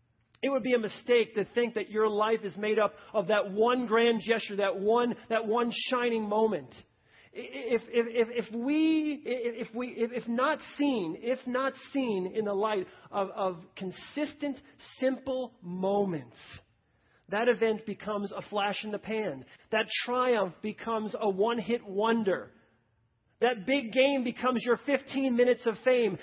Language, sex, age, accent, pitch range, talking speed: English, male, 40-59, American, 205-260 Hz, 155 wpm